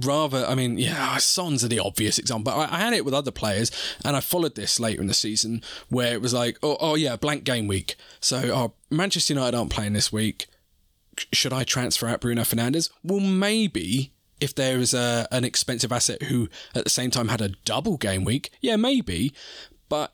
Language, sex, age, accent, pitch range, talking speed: English, male, 20-39, British, 110-140 Hz, 205 wpm